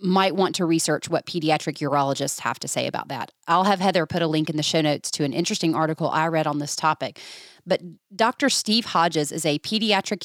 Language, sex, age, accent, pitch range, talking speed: English, female, 30-49, American, 155-200 Hz, 225 wpm